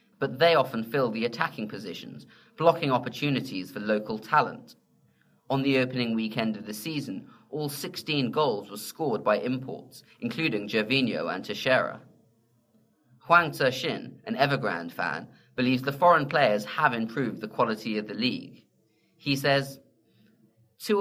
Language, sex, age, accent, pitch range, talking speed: English, male, 20-39, British, 110-150 Hz, 140 wpm